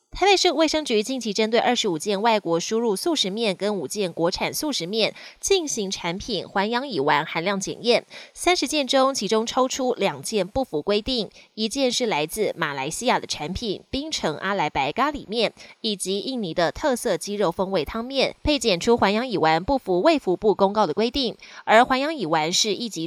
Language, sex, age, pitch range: Chinese, female, 20-39, 180-260 Hz